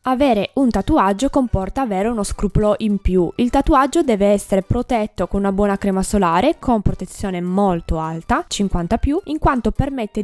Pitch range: 195-265 Hz